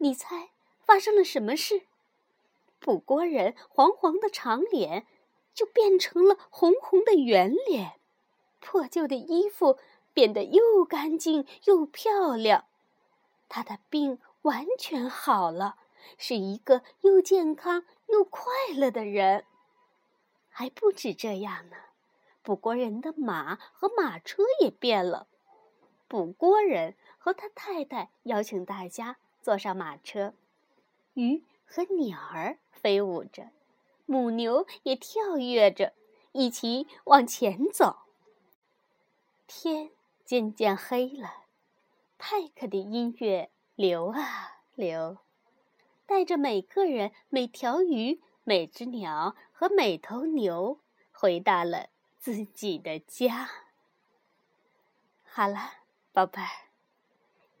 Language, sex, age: Chinese, female, 20-39